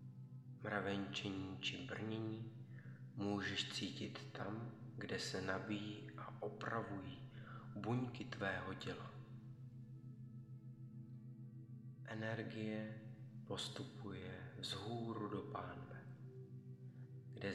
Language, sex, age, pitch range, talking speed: Czech, male, 30-49, 105-130 Hz, 70 wpm